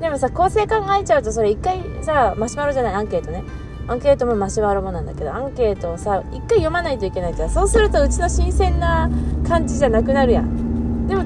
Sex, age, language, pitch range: female, 20-39, Japanese, 70-80 Hz